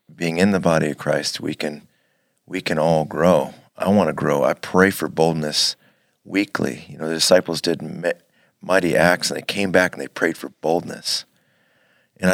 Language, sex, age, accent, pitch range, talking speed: English, male, 40-59, American, 80-95 Hz, 185 wpm